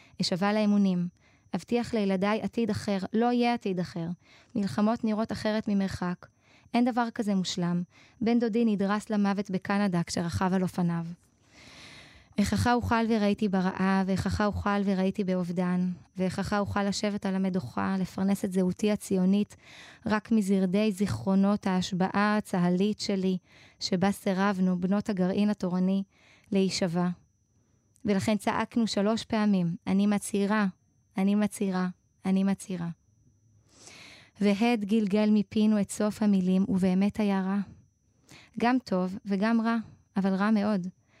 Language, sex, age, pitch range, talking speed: Hebrew, female, 20-39, 185-210 Hz, 120 wpm